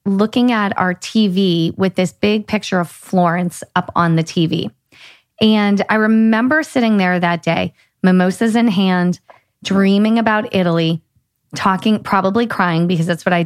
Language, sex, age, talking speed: English, female, 30-49, 150 wpm